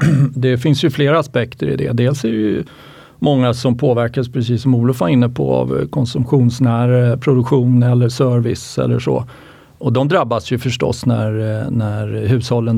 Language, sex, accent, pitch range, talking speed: Swedish, male, native, 120-140 Hz, 165 wpm